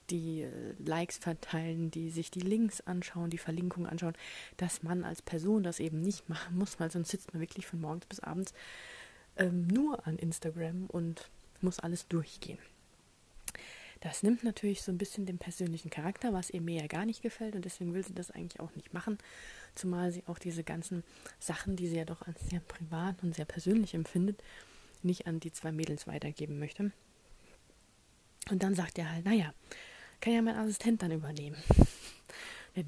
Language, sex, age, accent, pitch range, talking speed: German, female, 30-49, German, 165-195 Hz, 180 wpm